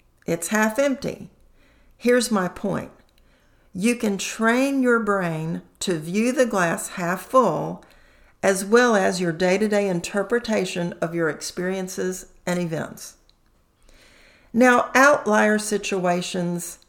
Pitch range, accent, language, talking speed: 180-225 Hz, American, English, 110 wpm